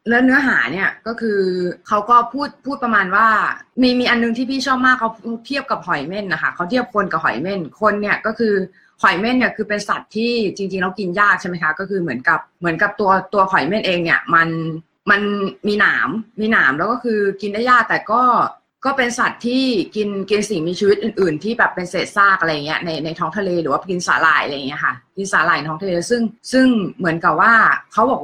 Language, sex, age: Thai, female, 20-39